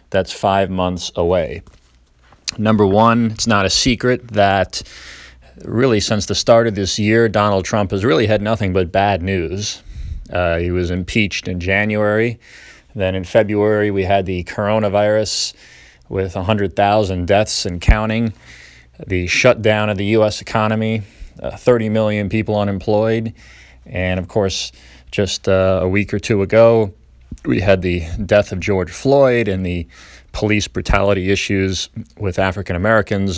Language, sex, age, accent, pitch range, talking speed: English, male, 20-39, American, 90-110 Hz, 145 wpm